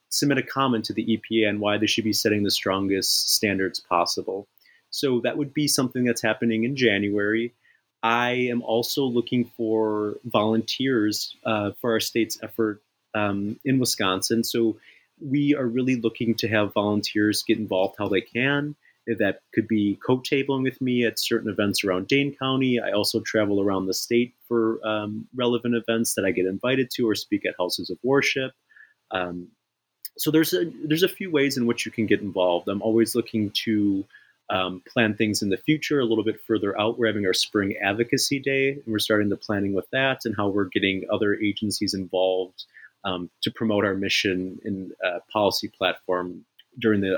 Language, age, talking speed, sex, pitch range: English, 30-49, 180 wpm, male, 100-120 Hz